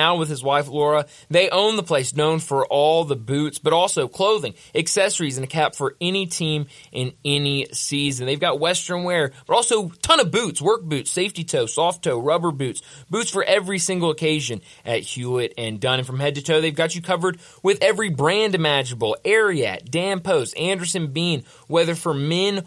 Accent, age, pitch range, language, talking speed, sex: American, 20-39, 140-180 Hz, English, 200 wpm, male